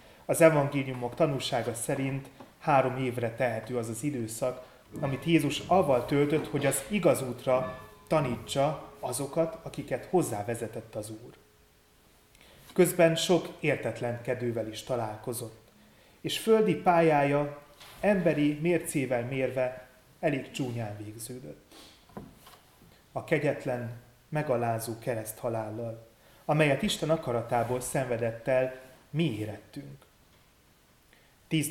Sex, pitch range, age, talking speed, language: male, 115-145 Hz, 30-49, 95 wpm, Hungarian